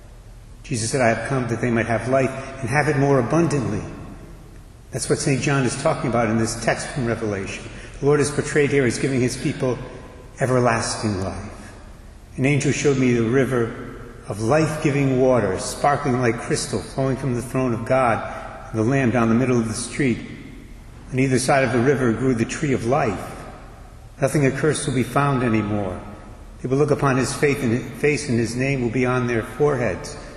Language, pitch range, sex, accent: English, 110-135 Hz, male, American